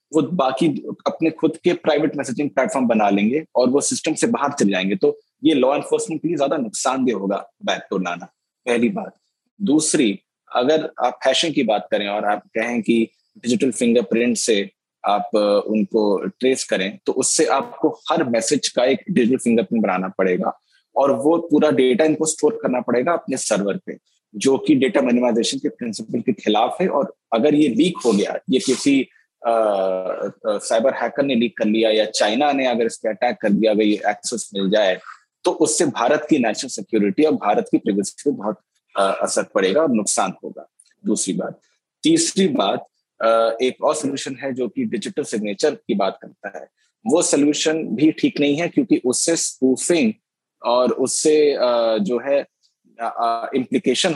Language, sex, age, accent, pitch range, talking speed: Hindi, male, 20-39, native, 115-160 Hz, 145 wpm